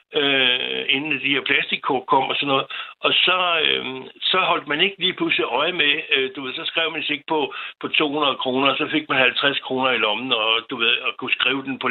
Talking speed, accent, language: 235 wpm, native, Danish